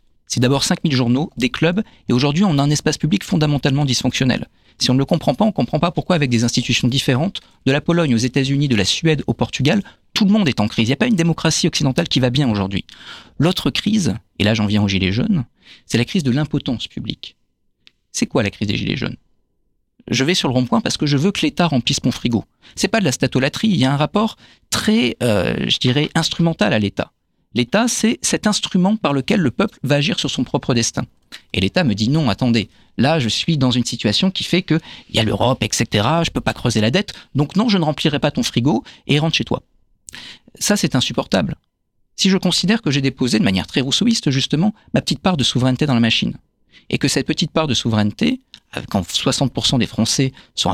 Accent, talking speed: French, 235 wpm